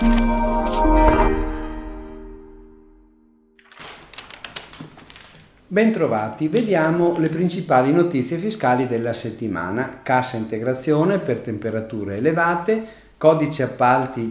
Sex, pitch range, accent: male, 110-155 Hz, native